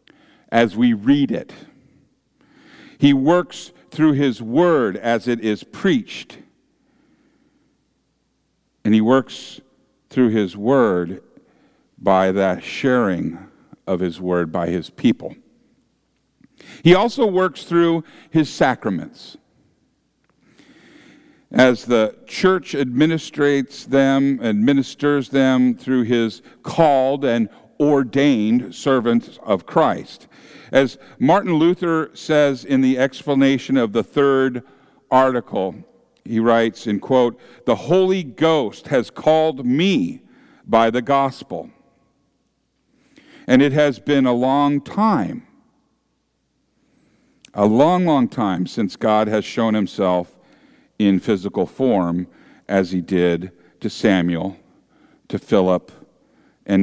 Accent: American